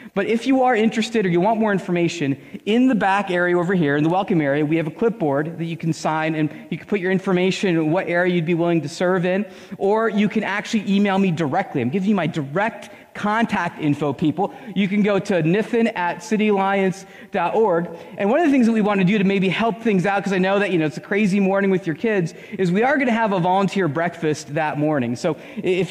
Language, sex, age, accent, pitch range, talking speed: English, male, 30-49, American, 165-210 Hz, 245 wpm